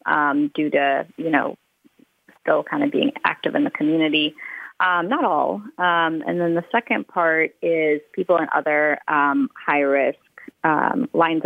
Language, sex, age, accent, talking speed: English, female, 30-49, American, 150 wpm